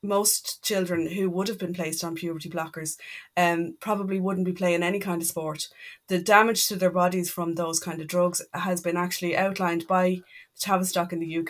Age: 20-39